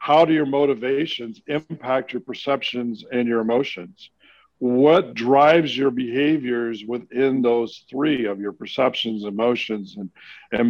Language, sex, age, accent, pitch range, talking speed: English, male, 50-69, American, 120-145 Hz, 130 wpm